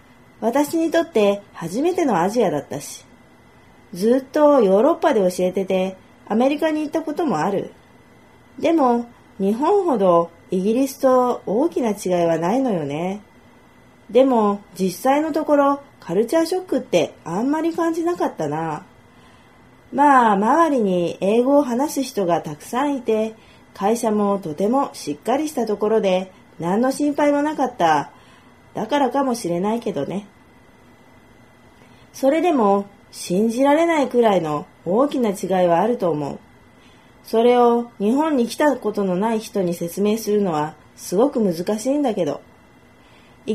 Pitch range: 190-275 Hz